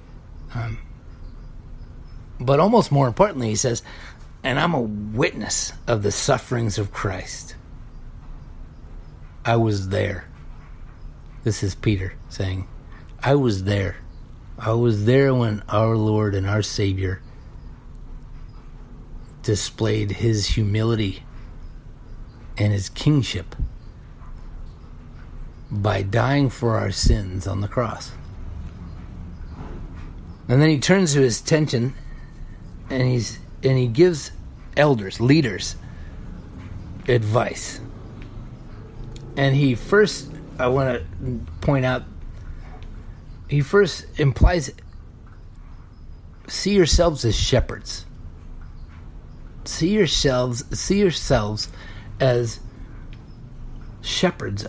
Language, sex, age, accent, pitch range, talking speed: English, male, 50-69, American, 90-130 Hz, 95 wpm